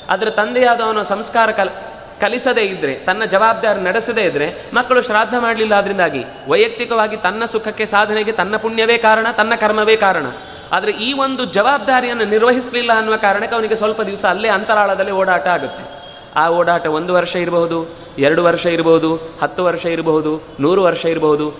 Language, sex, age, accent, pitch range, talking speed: Kannada, male, 30-49, native, 180-225 Hz, 145 wpm